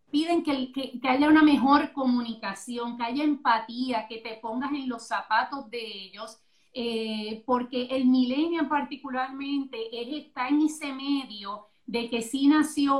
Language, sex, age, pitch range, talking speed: Spanish, female, 30-49, 225-265 Hz, 145 wpm